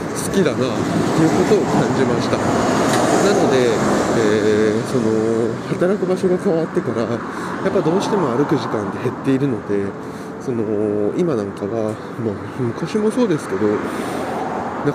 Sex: male